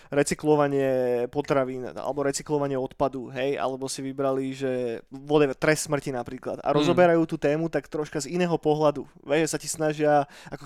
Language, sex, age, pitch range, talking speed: Slovak, male, 20-39, 140-165 Hz, 165 wpm